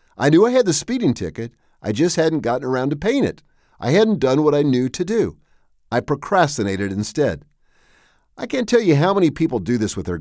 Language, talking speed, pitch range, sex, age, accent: English, 215 wpm, 110-165 Hz, male, 50-69, American